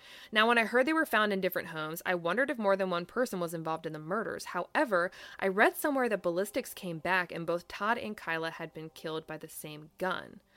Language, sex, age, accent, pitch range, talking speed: English, female, 20-39, American, 165-210 Hz, 240 wpm